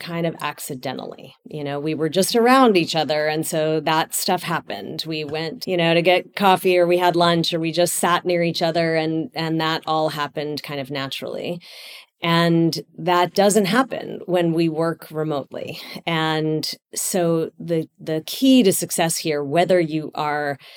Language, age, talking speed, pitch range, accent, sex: English, 40-59, 175 wpm, 150-175 Hz, American, female